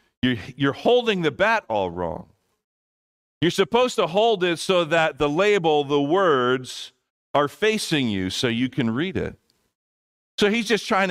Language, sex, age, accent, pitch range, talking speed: English, male, 50-69, American, 115-155 Hz, 155 wpm